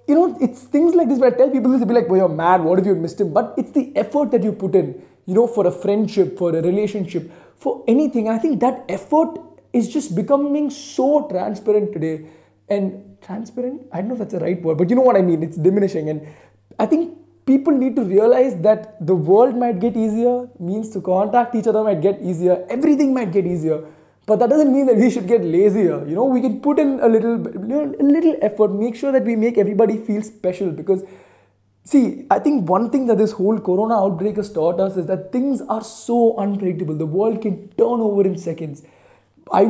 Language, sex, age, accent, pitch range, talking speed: Tamil, male, 20-39, native, 180-240 Hz, 225 wpm